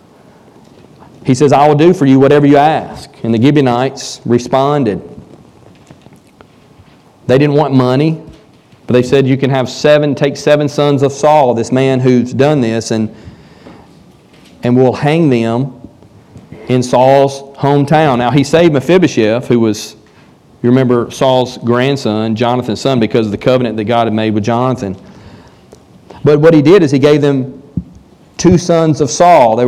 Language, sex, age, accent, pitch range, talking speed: English, male, 40-59, American, 120-145 Hz, 160 wpm